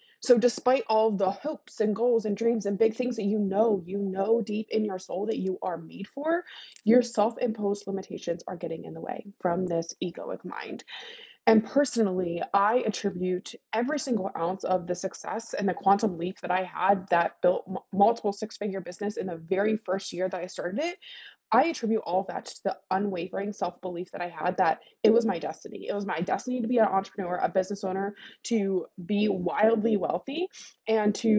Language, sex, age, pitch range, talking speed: English, female, 20-39, 180-225 Hz, 195 wpm